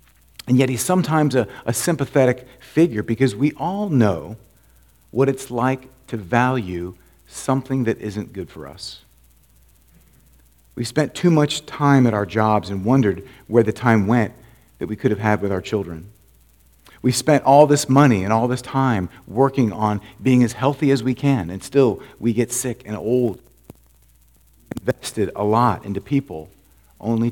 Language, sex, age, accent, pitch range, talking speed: English, male, 40-59, American, 95-130 Hz, 165 wpm